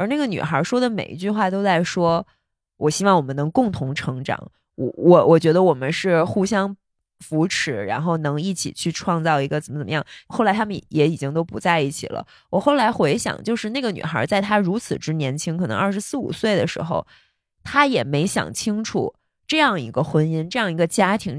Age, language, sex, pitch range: 20-39, Chinese, female, 160-220 Hz